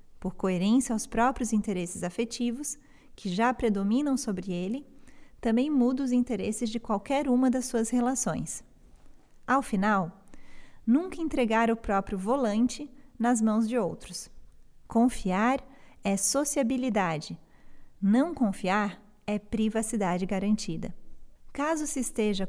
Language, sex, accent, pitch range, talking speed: Portuguese, female, Brazilian, 205-250 Hz, 115 wpm